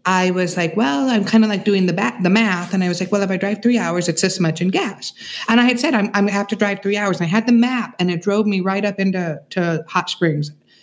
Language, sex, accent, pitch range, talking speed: English, female, American, 160-200 Hz, 310 wpm